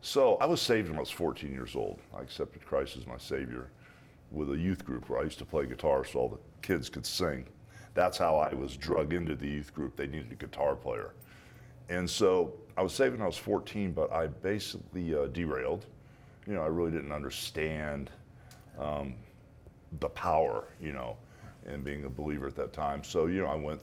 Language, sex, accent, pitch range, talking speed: English, male, American, 75-95 Hz, 210 wpm